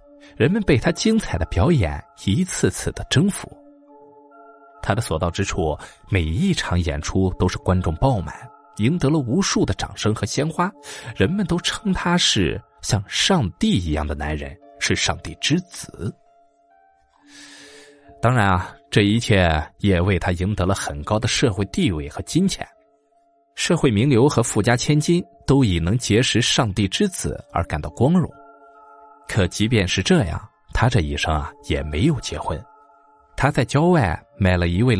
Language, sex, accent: Chinese, male, native